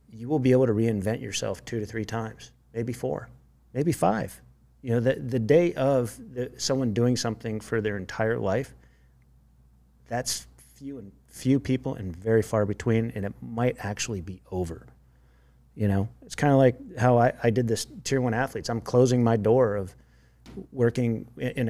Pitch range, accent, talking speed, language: 105-125 Hz, American, 180 wpm, English